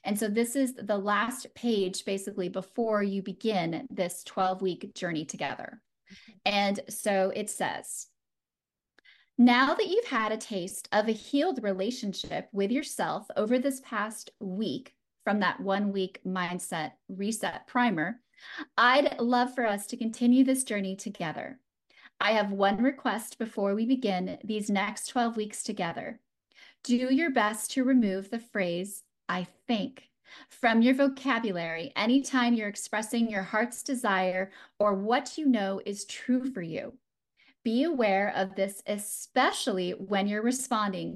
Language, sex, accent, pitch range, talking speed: English, female, American, 195-255 Hz, 140 wpm